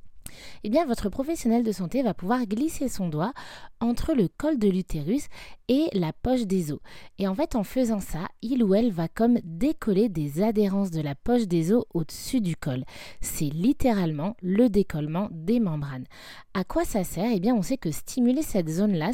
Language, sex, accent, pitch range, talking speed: French, female, French, 170-230 Hz, 200 wpm